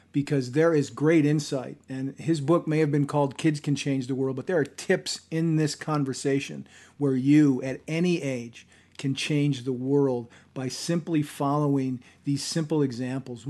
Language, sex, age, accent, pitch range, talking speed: English, male, 40-59, American, 135-155 Hz, 175 wpm